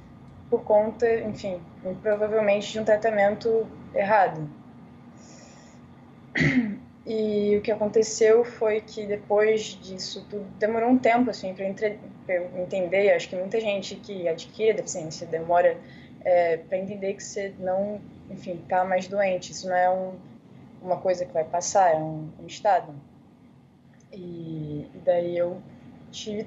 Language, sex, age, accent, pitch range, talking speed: Portuguese, female, 20-39, Brazilian, 185-225 Hz, 135 wpm